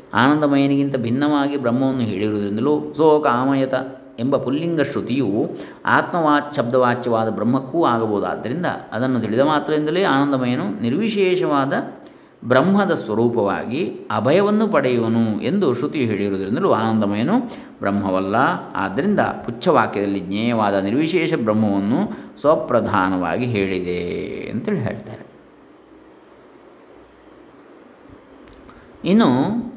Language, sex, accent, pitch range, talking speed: Kannada, male, native, 110-135 Hz, 75 wpm